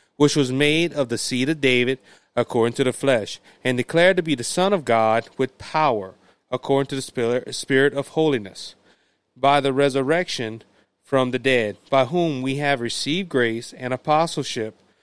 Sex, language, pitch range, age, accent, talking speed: male, English, 125-155 Hz, 30-49, American, 170 wpm